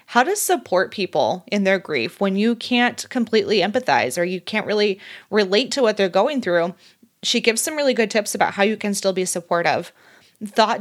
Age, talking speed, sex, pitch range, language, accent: 20-39, 200 wpm, female, 190-230 Hz, English, American